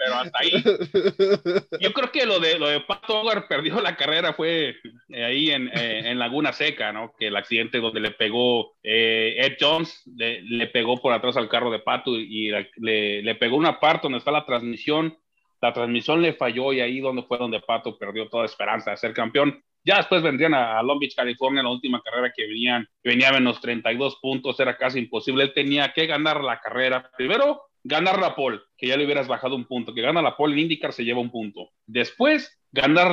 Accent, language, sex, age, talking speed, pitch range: Mexican, Spanish, male, 30-49, 215 wpm, 120-160 Hz